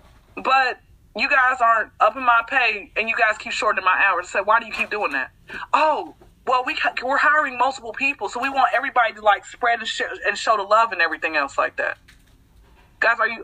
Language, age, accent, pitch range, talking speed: English, 20-39, American, 200-310 Hz, 230 wpm